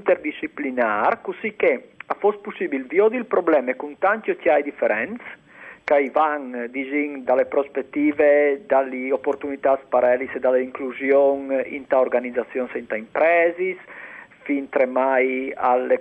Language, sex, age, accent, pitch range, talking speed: Italian, male, 50-69, native, 130-215 Hz, 110 wpm